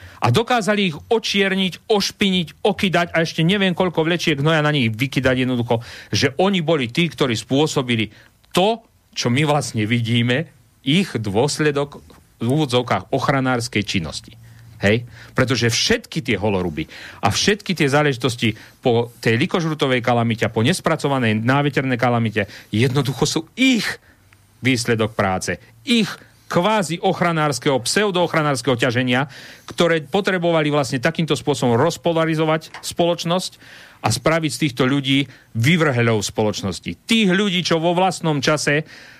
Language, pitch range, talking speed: Slovak, 120-165 Hz, 125 wpm